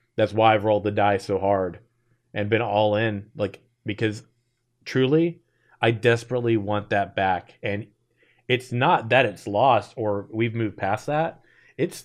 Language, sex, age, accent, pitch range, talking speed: English, male, 30-49, American, 105-120 Hz, 160 wpm